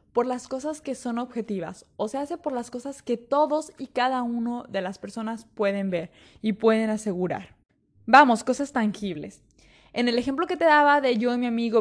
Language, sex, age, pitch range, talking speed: Spanish, female, 20-39, 215-270 Hz, 200 wpm